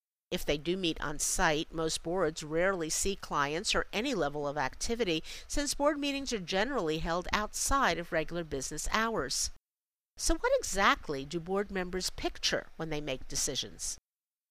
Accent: American